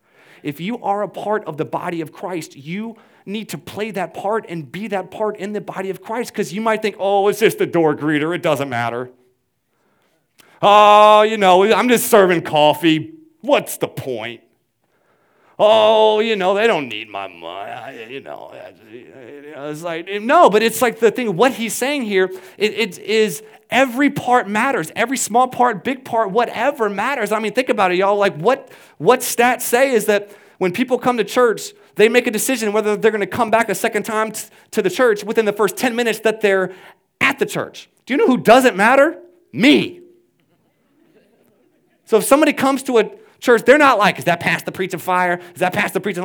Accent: American